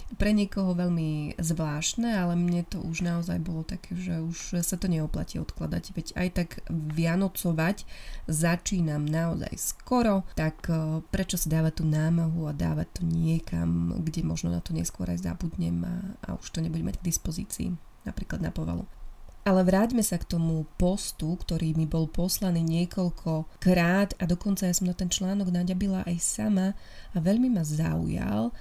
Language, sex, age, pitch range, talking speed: Slovak, female, 20-39, 160-190 Hz, 165 wpm